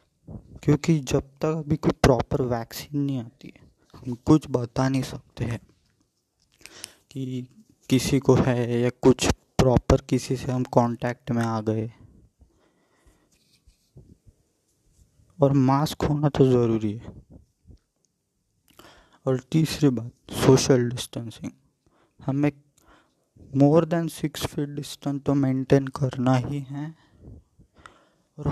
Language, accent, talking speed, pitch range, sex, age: Hindi, native, 110 wpm, 125-150 Hz, male, 20-39